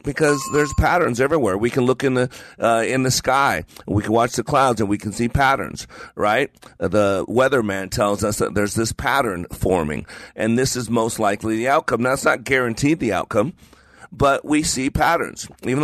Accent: American